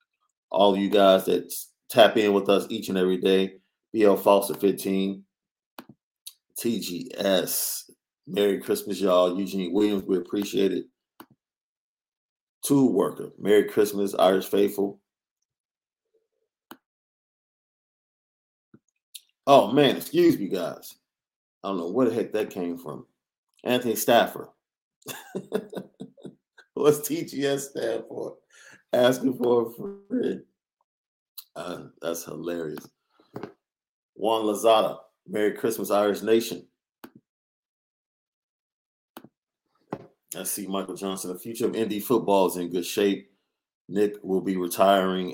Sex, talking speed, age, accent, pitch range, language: male, 105 wpm, 40-59, American, 90-125 Hz, English